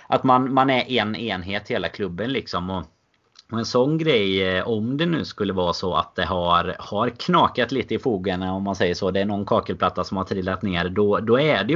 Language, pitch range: Swedish, 90-115 Hz